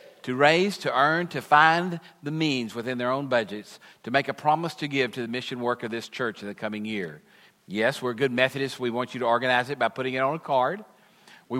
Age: 50-69